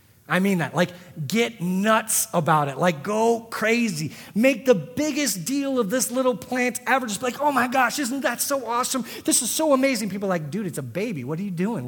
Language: English